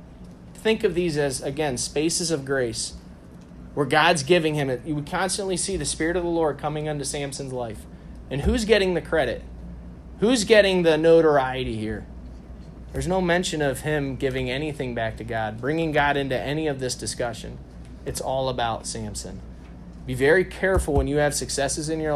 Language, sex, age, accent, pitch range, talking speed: English, male, 30-49, American, 110-155 Hz, 175 wpm